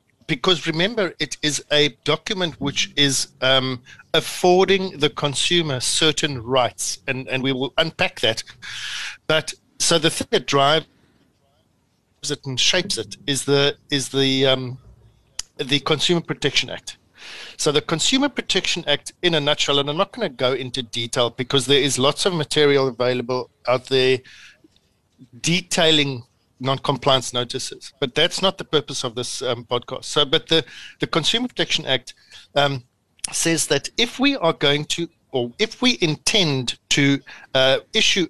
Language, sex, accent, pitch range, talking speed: English, male, South African, 130-165 Hz, 155 wpm